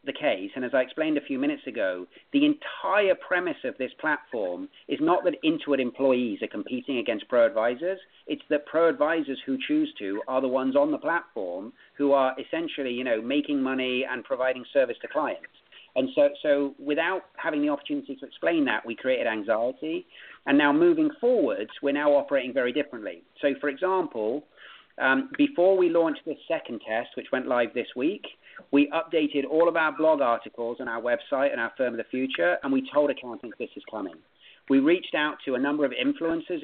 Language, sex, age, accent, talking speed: English, male, 40-59, British, 190 wpm